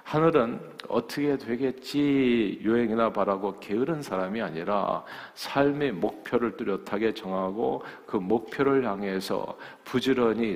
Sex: male